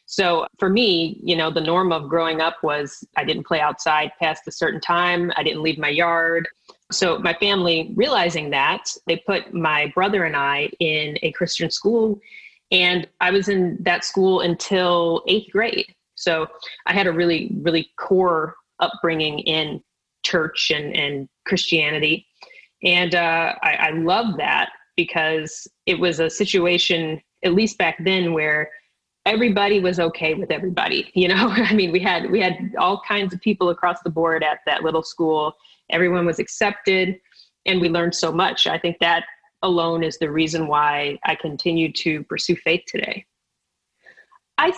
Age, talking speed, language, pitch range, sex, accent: 30-49, 165 wpm, English, 160-190 Hz, female, American